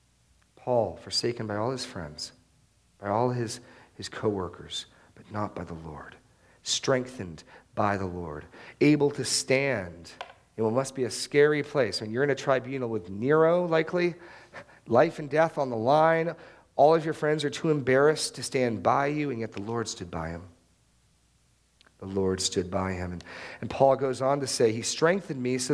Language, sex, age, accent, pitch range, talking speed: English, male, 40-59, American, 110-150 Hz, 180 wpm